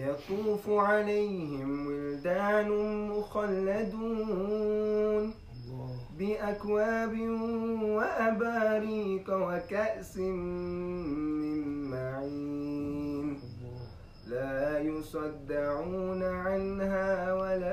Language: English